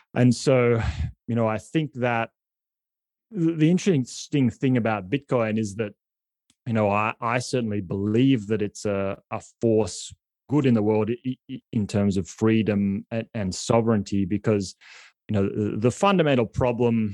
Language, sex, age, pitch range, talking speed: English, male, 30-49, 105-125 Hz, 150 wpm